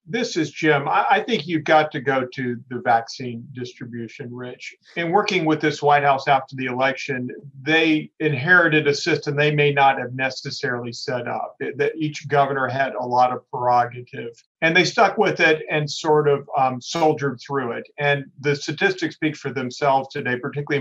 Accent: American